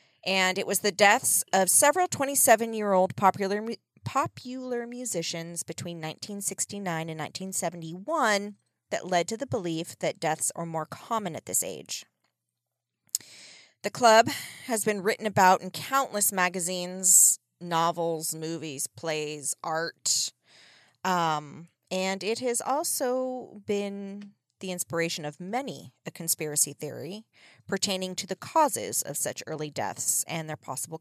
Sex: female